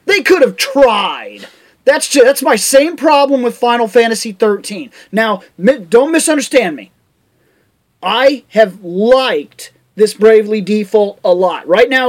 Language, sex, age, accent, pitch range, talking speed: English, male, 30-49, American, 220-270 Hz, 140 wpm